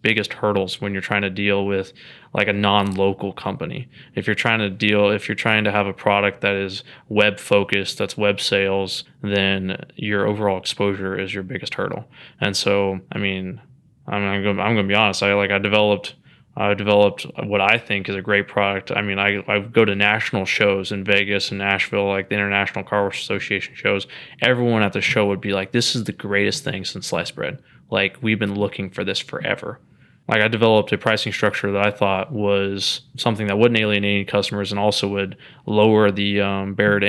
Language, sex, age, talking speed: English, male, 20-39, 200 wpm